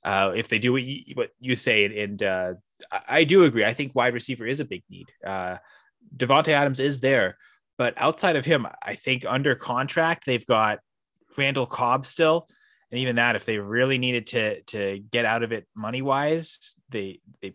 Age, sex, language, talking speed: 20-39, male, English, 195 wpm